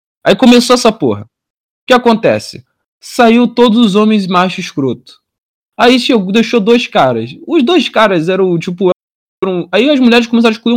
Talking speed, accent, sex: 165 wpm, Brazilian, male